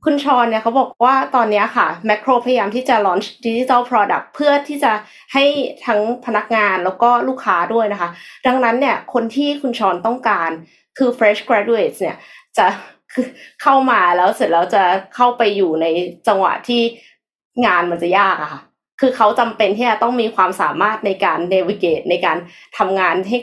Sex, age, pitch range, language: female, 20-39, 190-250 Hz, Thai